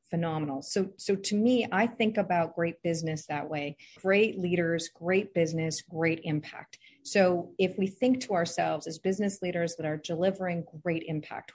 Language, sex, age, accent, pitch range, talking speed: English, female, 40-59, American, 165-215 Hz, 165 wpm